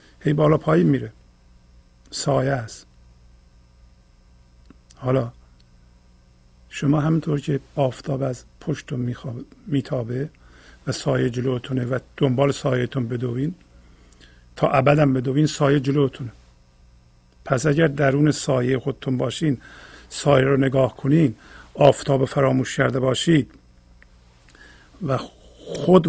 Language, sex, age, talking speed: Persian, male, 50-69, 95 wpm